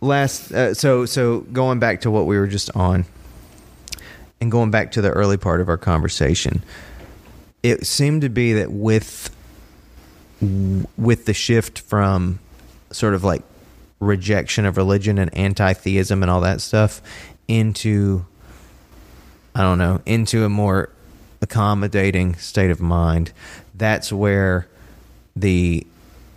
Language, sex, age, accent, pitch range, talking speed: English, male, 30-49, American, 90-110 Hz, 135 wpm